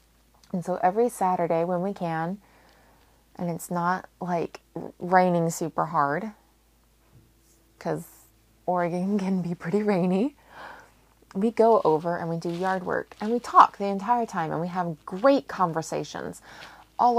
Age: 20-39